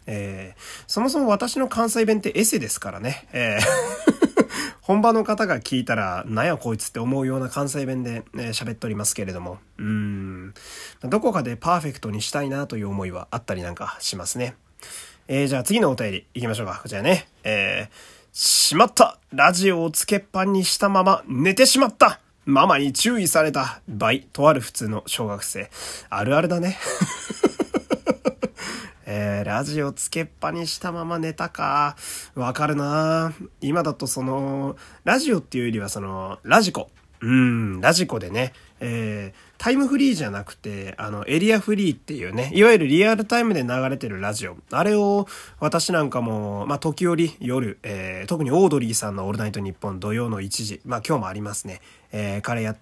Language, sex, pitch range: Japanese, male, 105-170 Hz